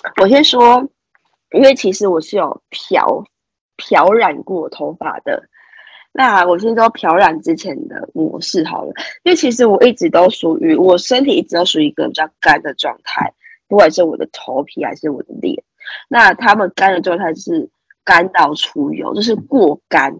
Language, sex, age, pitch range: Chinese, female, 20-39, 185-310 Hz